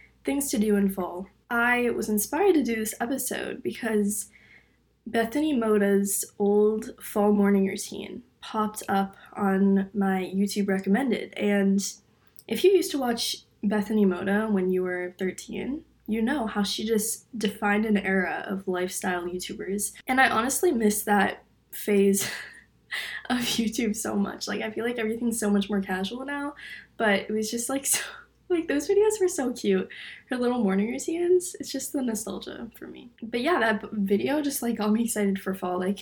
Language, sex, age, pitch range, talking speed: English, female, 20-39, 200-245 Hz, 170 wpm